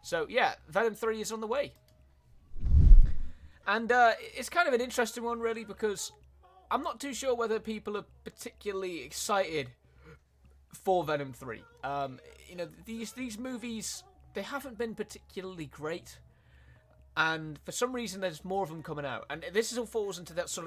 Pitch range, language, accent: 130-190 Hz, Italian, British